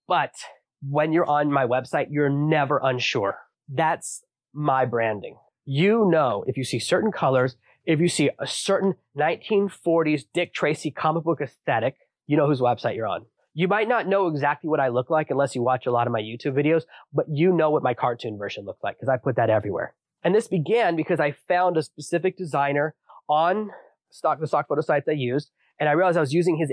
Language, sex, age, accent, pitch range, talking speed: English, male, 20-39, American, 130-165 Hz, 205 wpm